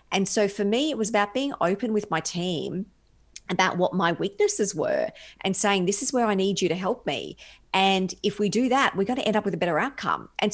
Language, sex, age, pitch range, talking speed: English, female, 40-59, 165-200 Hz, 245 wpm